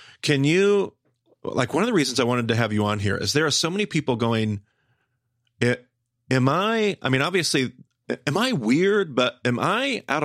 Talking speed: 195 wpm